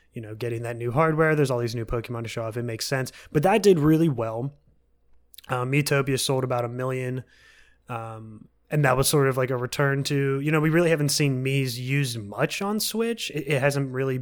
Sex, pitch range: male, 115-145 Hz